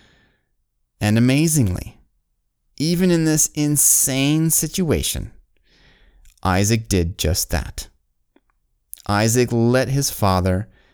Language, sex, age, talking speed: English, male, 30-49, 80 wpm